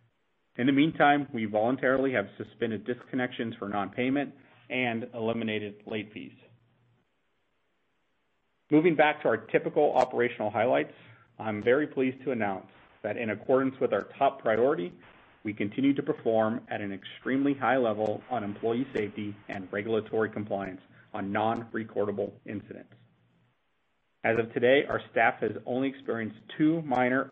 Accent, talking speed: American, 140 wpm